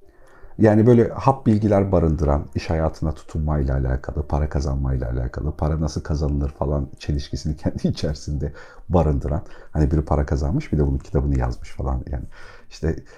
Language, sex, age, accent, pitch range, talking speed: Turkish, male, 50-69, native, 75-105 Hz, 145 wpm